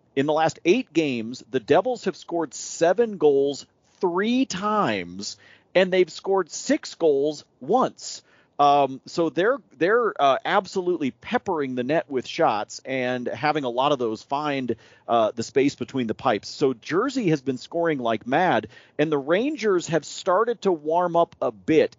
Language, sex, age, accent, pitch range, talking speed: English, male, 40-59, American, 115-165 Hz, 165 wpm